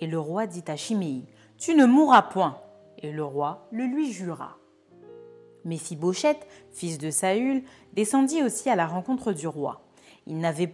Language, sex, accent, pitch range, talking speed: French, female, French, 165-225 Hz, 175 wpm